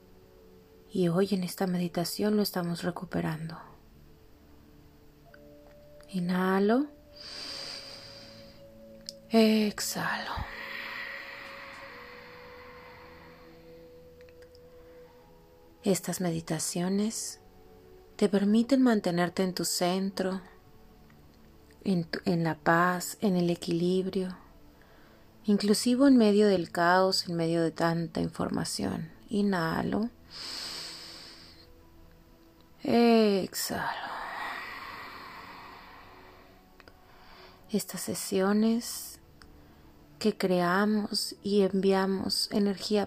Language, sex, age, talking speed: Spanish, female, 30-49, 65 wpm